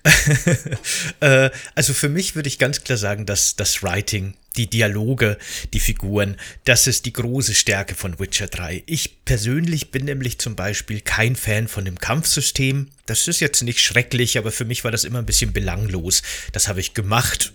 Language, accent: German, German